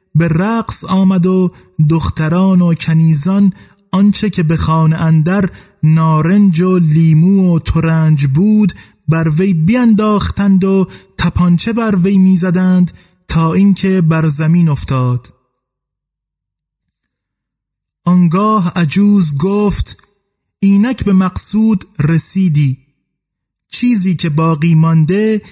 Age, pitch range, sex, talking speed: 30-49, 160-205 Hz, male, 100 wpm